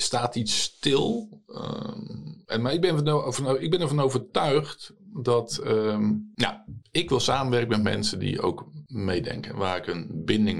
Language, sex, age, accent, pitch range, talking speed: Dutch, male, 50-69, Dutch, 95-120 Hz, 155 wpm